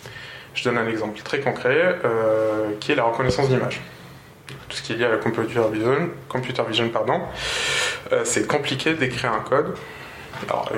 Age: 20-39